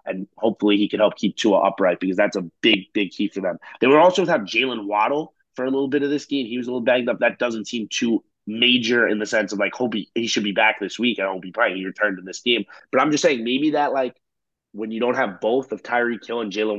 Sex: male